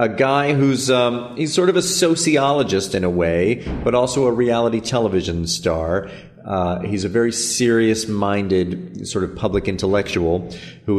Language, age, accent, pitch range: English, 40-59, American, 95-125 Hz